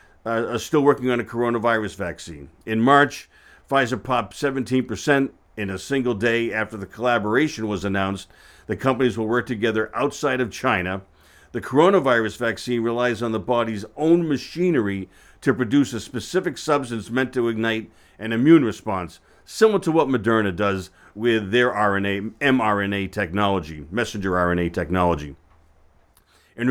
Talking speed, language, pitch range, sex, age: 145 wpm, English, 105-130 Hz, male, 50-69